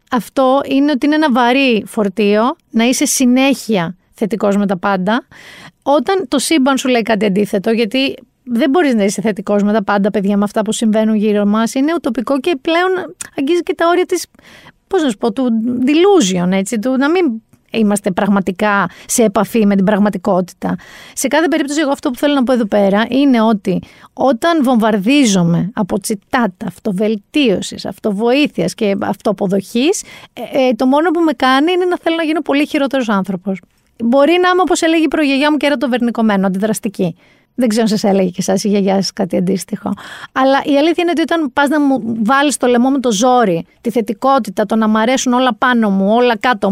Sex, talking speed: female, 185 wpm